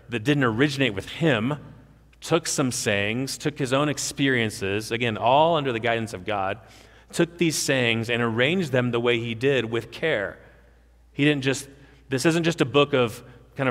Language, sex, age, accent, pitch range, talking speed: English, male, 40-59, American, 105-140 Hz, 180 wpm